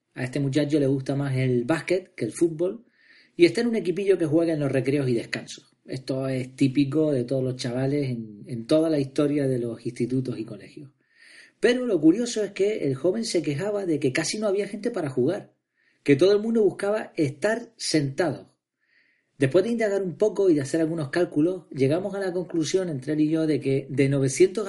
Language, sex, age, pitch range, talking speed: Spanish, male, 40-59, 135-190 Hz, 210 wpm